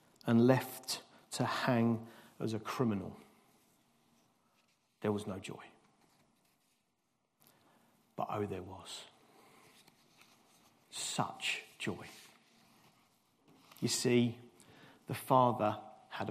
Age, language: 50-69, English